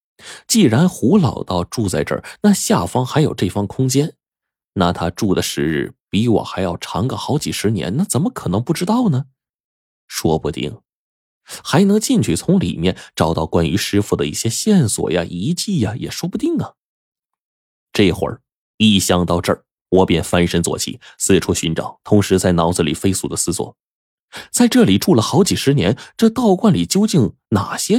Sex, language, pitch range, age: male, Chinese, 85-135 Hz, 20-39